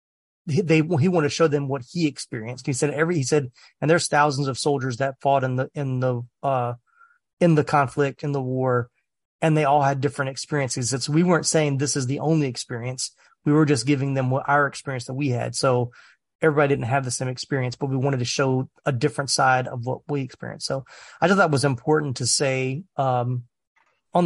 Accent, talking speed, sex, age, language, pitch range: American, 220 wpm, male, 30-49, English, 130-150 Hz